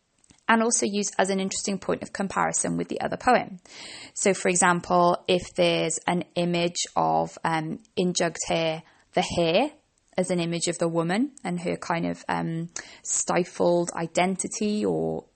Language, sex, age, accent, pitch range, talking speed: English, female, 20-39, British, 170-205 Hz, 160 wpm